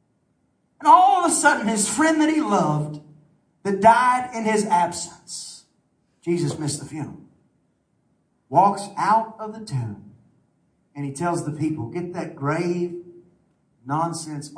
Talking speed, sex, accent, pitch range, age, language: 135 wpm, male, American, 150-205 Hz, 40-59, English